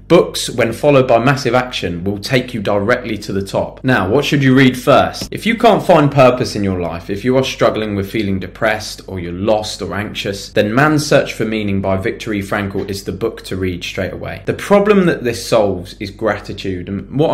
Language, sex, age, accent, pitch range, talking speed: English, male, 20-39, British, 100-130 Hz, 220 wpm